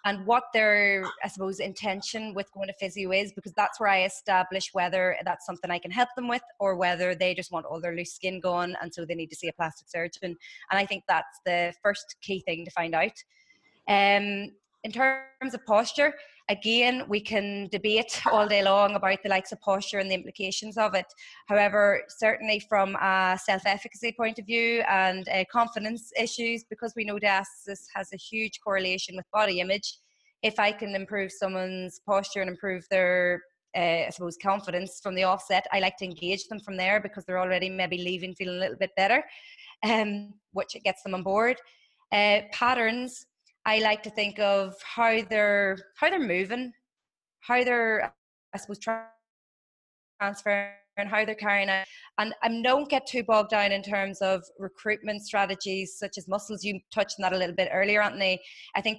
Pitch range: 185-215 Hz